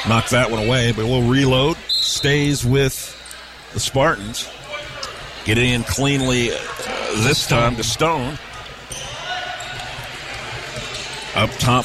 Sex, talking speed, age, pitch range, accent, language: male, 105 wpm, 40-59, 115-140 Hz, American, English